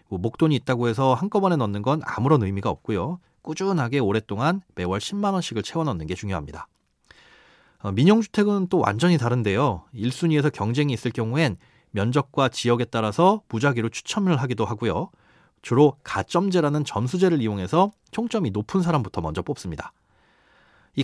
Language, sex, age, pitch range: Korean, male, 30-49, 110-165 Hz